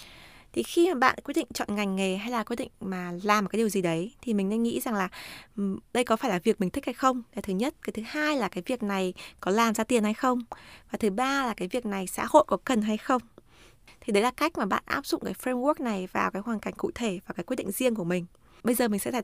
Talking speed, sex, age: 290 wpm, female, 20-39